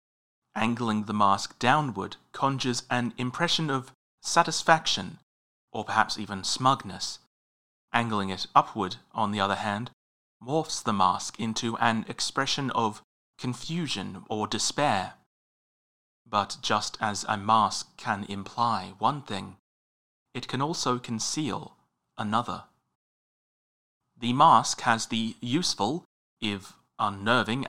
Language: English